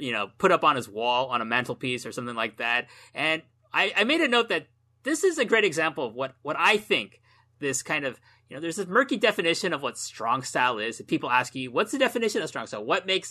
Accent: American